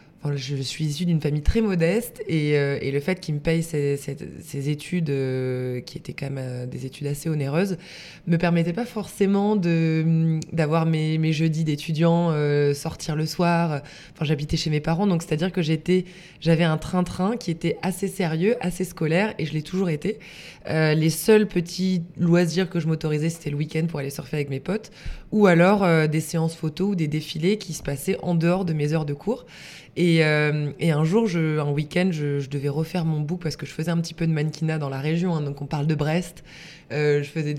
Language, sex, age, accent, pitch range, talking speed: French, female, 20-39, French, 150-175 Hz, 220 wpm